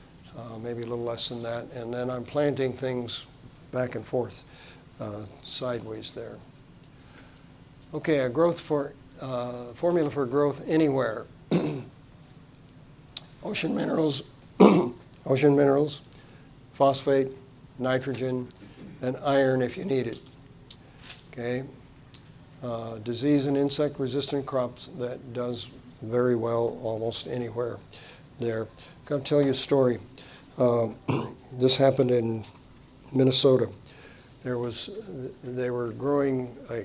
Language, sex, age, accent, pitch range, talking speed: English, male, 60-79, American, 120-140 Hz, 115 wpm